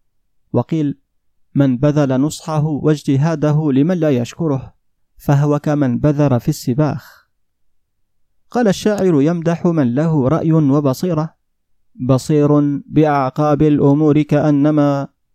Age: 30-49